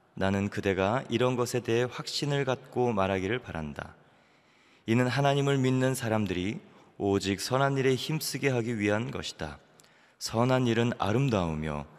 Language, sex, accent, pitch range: Korean, male, native, 90-120 Hz